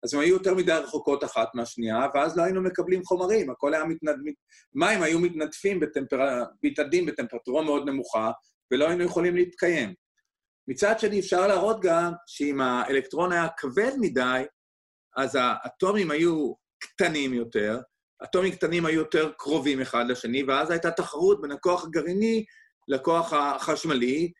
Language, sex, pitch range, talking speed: Hebrew, male, 135-200 Hz, 145 wpm